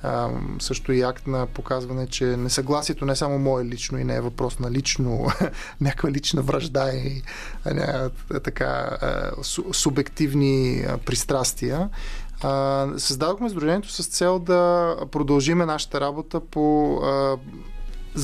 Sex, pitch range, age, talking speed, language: male, 135-160 Hz, 20-39, 130 wpm, Bulgarian